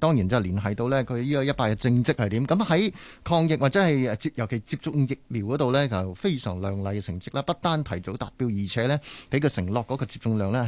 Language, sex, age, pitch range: Chinese, male, 30-49, 100-135 Hz